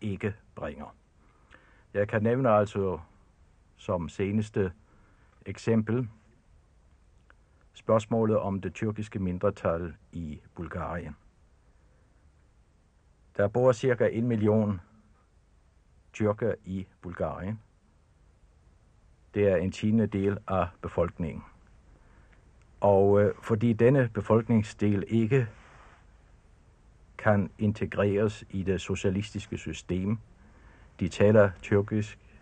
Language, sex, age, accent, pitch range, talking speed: Danish, male, 60-79, native, 85-110 Hz, 85 wpm